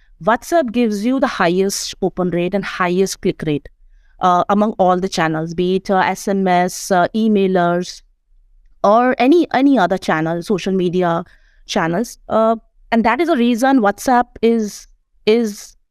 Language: English